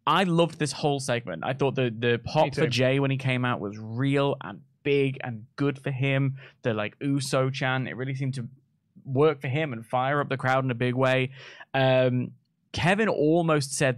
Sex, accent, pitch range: male, British, 120-145 Hz